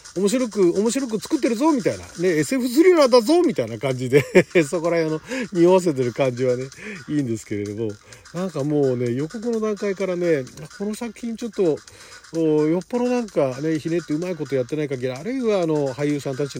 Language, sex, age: Japanese, male, 40-59